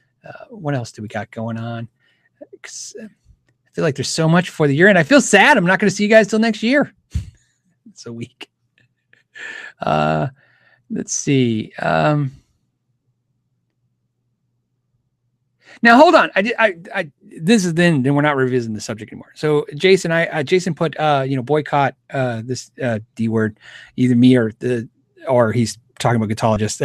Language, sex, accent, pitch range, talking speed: English, male, American, 125-185 Hz, 175 wpm